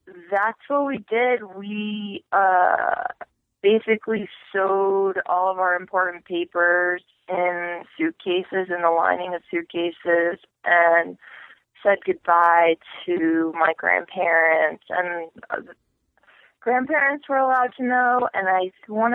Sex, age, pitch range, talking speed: female, 30-49, 170-215 Hz, 110 wpm